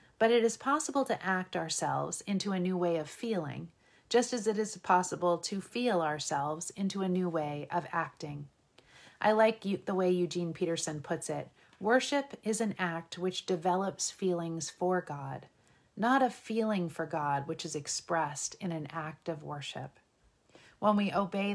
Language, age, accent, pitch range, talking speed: English, 40-59, American, 160-195 Hz, 165 wpm